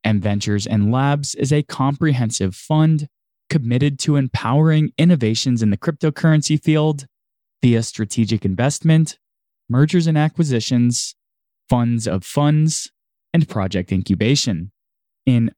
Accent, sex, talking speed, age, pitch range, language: American, male, 110 wpm, 20-39, 110-140 Hz, English